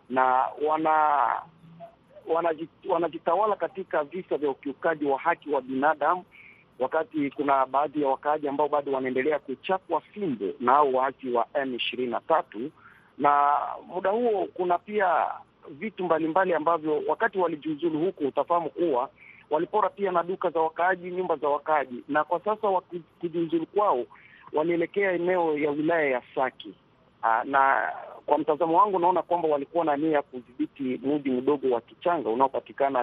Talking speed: 135 wpm